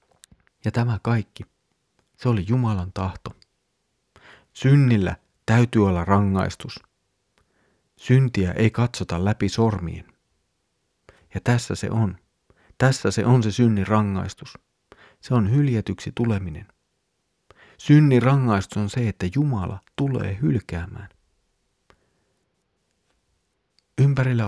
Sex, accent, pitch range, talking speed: male, native, 95-115 Hz, 95 wpm